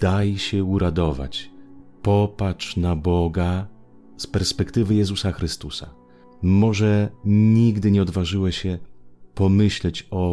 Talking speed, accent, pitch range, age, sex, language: 100 wpm, Polish, 85-100 Hz, 30-49, male, Italian